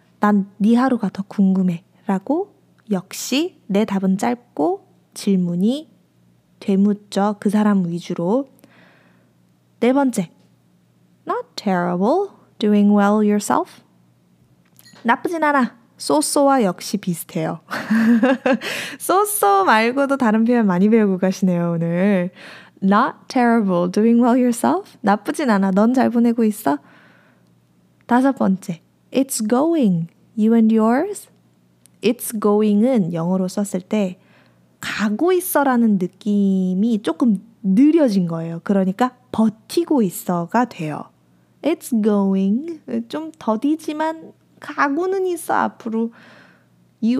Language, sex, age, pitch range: Korean, female, 20-39, 185-250 Hz